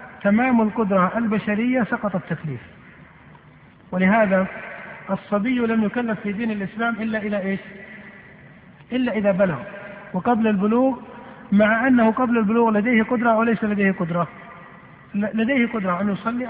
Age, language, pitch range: 50-69, Arabic, 195-230 Hz